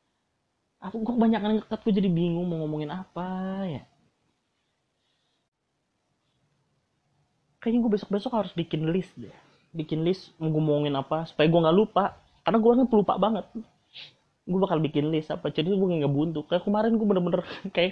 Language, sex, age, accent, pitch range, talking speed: Indonesian, male, 20-39, native, 145-185 Hz, 155 wpm